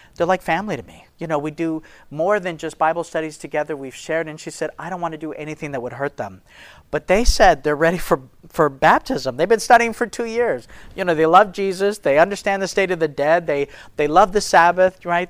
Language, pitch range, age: English, 150-185 Hz, 40-59